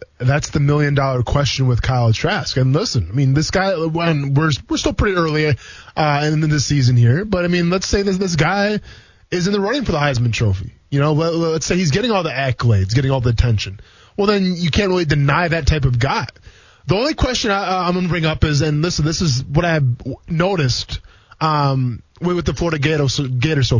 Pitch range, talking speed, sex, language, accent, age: 130-170 Hz, 220 wpm, male, English, American, 20-39